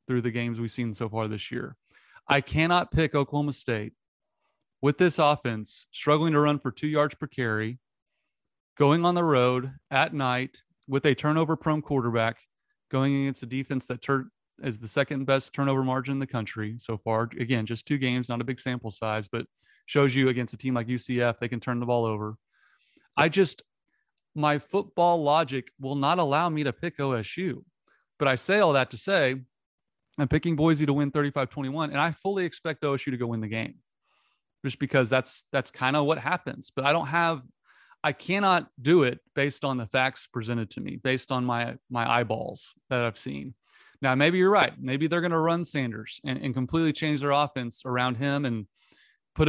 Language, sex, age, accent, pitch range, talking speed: English, male, 30-49, American, 120-150 Hz, 195 wpm